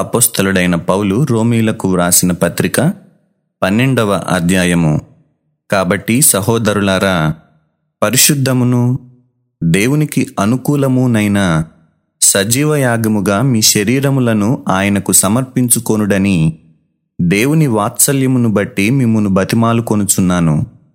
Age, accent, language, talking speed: 30-49, native, Telugu, 65 wpm